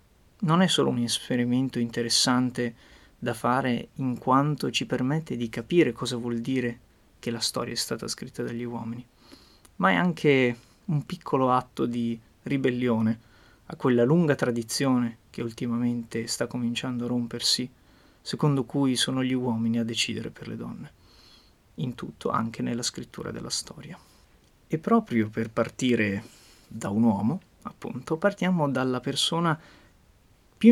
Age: 20-39